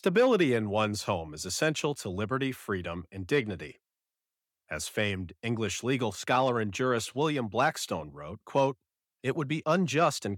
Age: 40-59